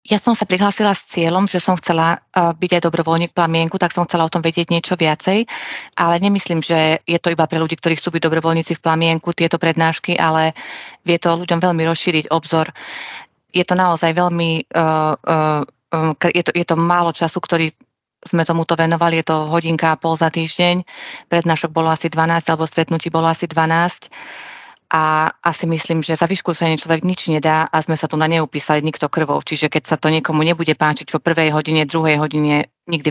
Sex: female